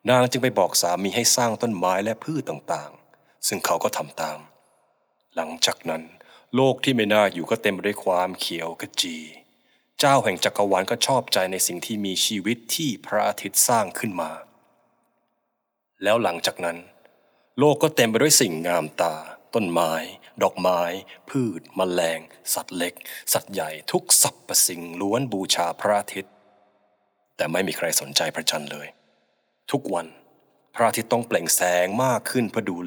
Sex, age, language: male, 20-39, Thai